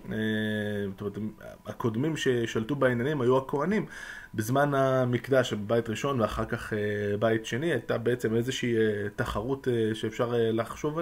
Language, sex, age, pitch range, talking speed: Hebrew, male, 20-39, 110-130 Hz, 105 wpm